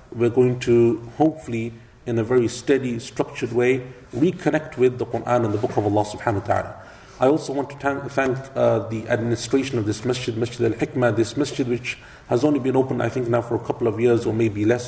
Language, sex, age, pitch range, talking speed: English, male, 40-59, 115-125 Hz, 215 wpm